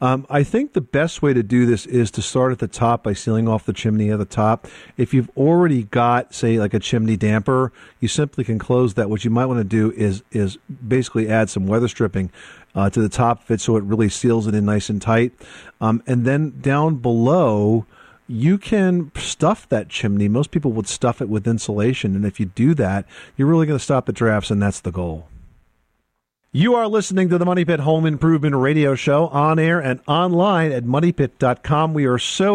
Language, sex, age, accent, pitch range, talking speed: English, male, 50-69, American, 110-145 Hz, 220 wpm